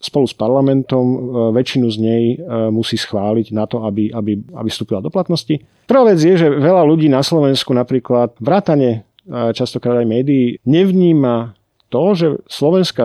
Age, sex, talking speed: 40-59, male, 155 wpm